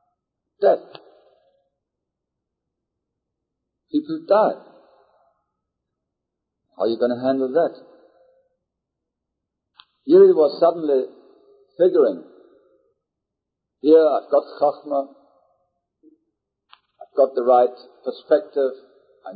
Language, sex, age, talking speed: English, male, 50-69, 75 wpm